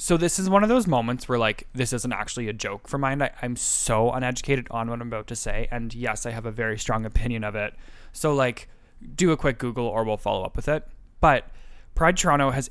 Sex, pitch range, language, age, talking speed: male, 120-150 Hz, English, 20-39, 240 wpm